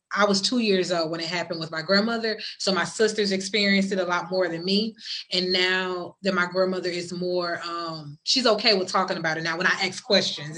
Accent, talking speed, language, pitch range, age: American, 225 wpm, English, 165-195 Hz, 20-39